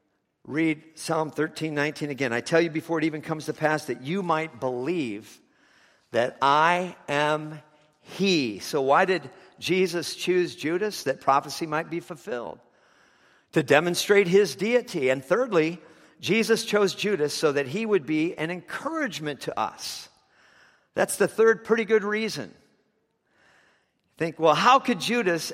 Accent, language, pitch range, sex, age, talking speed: American, English, 145-190 Hz, male, 50-69, 145 wpm